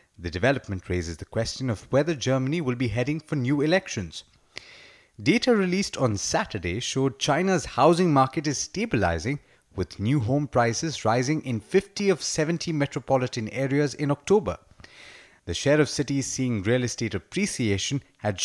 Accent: Indian